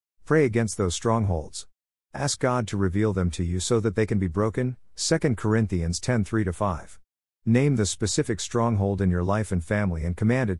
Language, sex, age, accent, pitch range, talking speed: English, male, 50-69, American, 90-110 Hz, 185 wpm